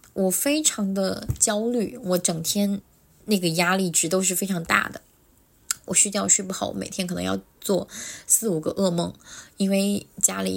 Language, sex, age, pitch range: Chinese, female, 20-39, 175-205 Hz